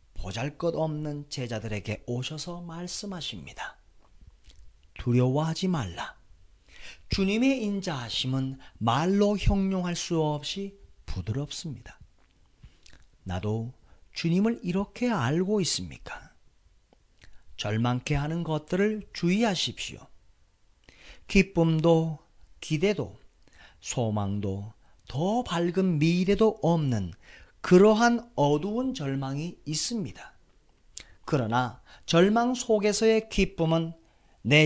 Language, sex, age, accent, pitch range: Korean, male, 40-59, native, 110-185 Hz